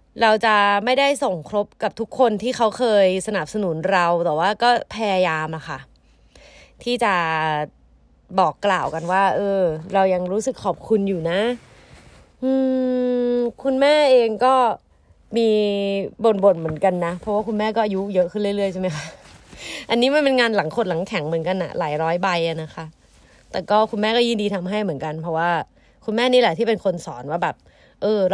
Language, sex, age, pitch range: Thai, female, 20-39, 175-230 Hz